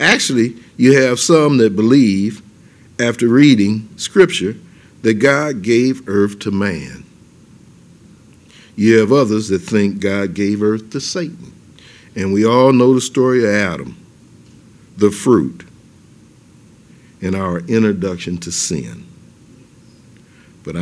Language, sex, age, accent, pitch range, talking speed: English, male, 50-69, American, 100-125 Hz, 120 wpm